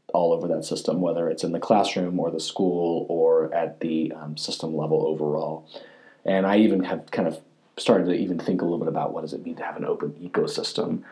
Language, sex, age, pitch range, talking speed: English, male, 30-49, 80-100 Hz, 225 wpm